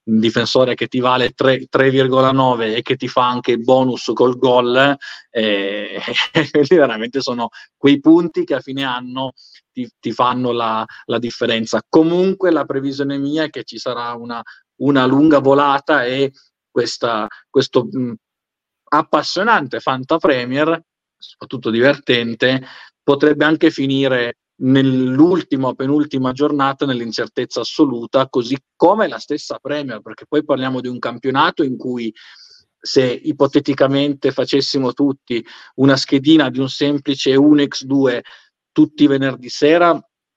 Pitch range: 120-140 Hz